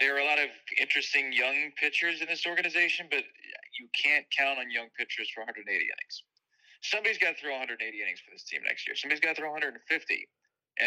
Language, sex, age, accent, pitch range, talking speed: English, male, 30-49, American, 110-175 Hz, 210 wpm